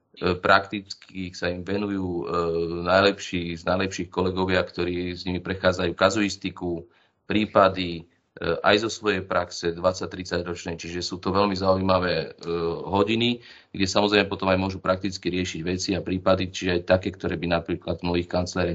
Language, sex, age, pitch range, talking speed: Slovak, male, 30-49, 90-100 Hz, 140 wpm